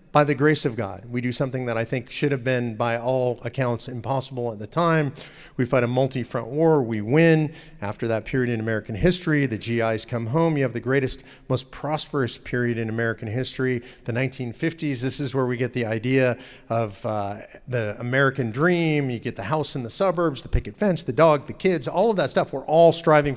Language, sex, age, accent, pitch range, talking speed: English, male, 40-59, American, 120-155 Hz, 215 wpm